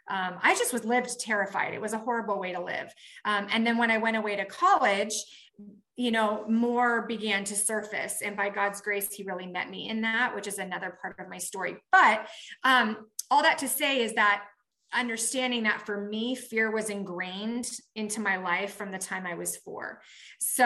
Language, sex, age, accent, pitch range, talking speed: English, female, 30-49, American, 205-245 Hz, 205 wpm